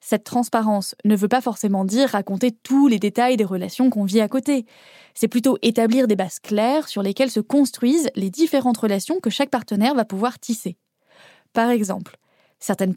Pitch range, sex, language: 205-270 Hz, female, French